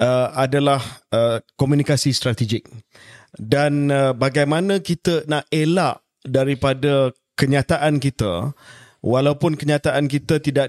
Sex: male